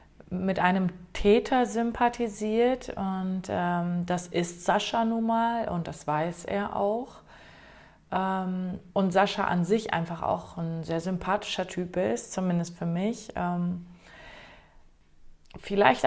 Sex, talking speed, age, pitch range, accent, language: female, 125 wpm, 30-49, 180-215 Hz, German, German